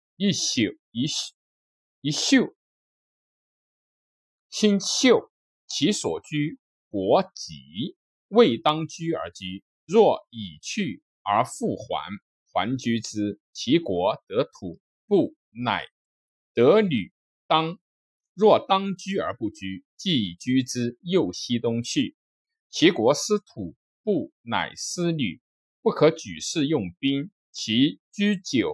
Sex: male